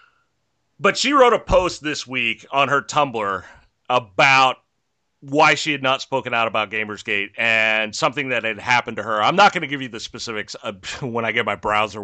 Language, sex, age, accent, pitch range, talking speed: English, male, 30-49, American, 105-140 Hz, 195 wpm